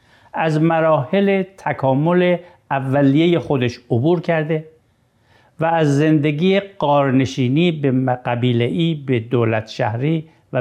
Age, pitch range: 60-79, 125-175 Hz